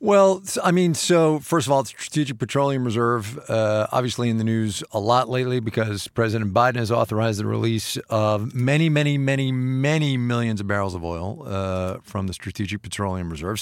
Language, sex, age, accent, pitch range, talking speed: English, male, 40-59, American, 105-135 Hz, 185 wpm